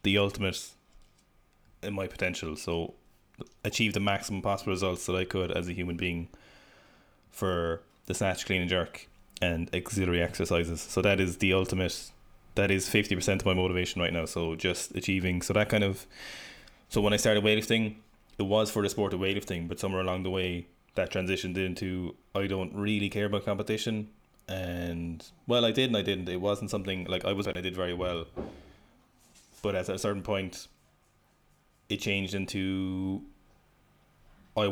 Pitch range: 90-100 Hz